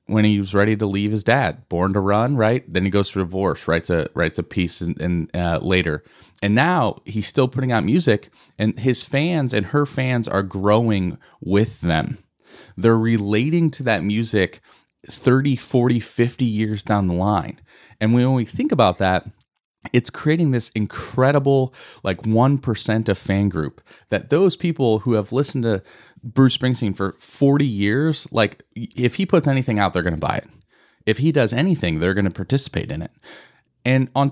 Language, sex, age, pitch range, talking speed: English, male, 30-49, 100-130 Hz, 185 wpm